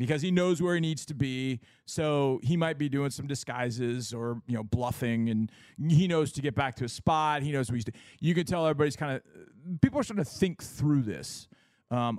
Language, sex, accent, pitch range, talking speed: English, male, American, 120-155 Hz, 230 wpm